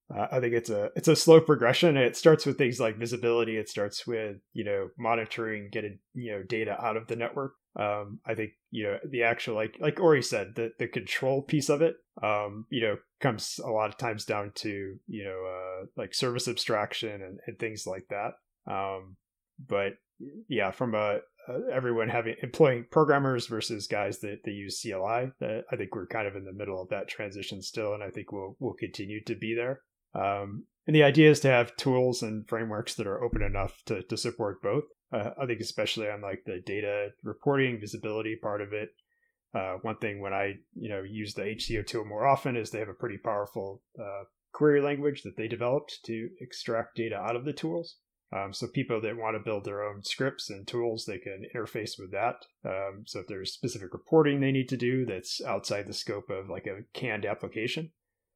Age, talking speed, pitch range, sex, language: 20-39, 210 wpm, 105-125 Hz, male, English